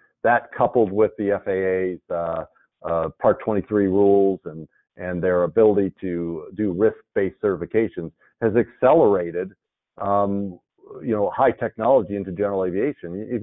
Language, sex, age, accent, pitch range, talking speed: English, male, 50-69, American, 95-110 Hz, 130 wpm